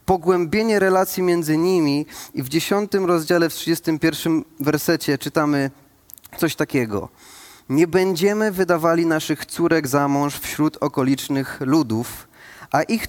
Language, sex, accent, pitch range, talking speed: Polish, male, native, 140-170 Hz, 120 wpm